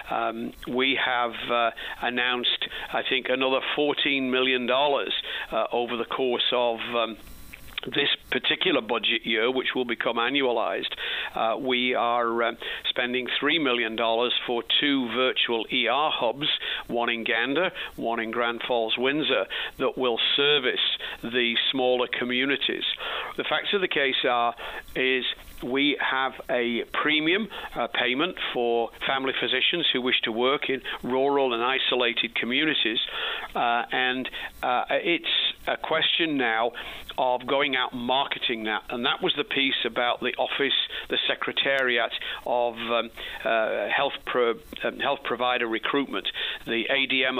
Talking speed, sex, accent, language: 135 wpm, male, British, English